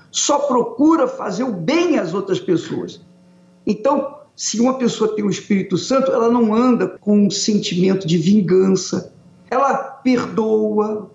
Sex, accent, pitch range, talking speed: male, Brazilian, 180-245 Hz, 140 wpm